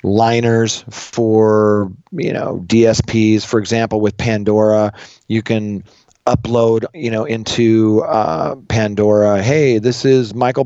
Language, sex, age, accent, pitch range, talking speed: English, male, 40-59, American, 110-130 Hz, 120 wpm